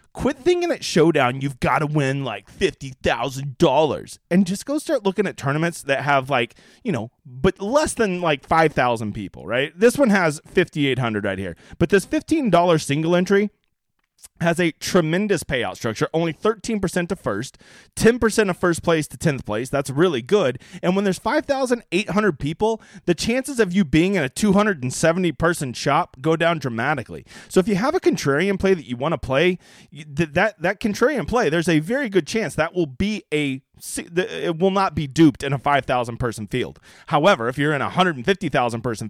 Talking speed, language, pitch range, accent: 180 wpm, English, 135-205 Hz, American